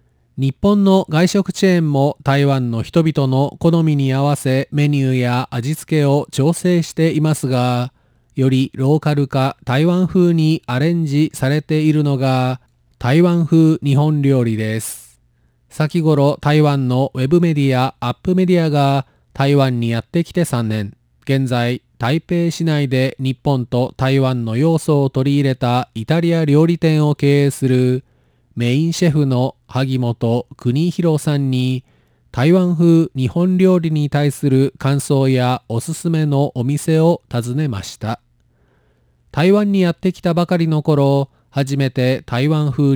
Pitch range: 125-160 Hz